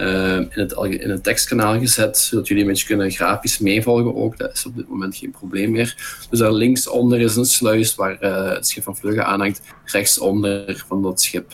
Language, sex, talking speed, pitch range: Dutch, male, 210 wpm, 100-115 Hz